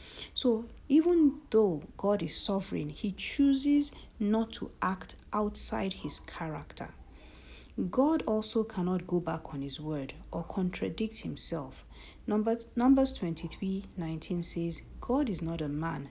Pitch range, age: 165-220 Hz, 50-69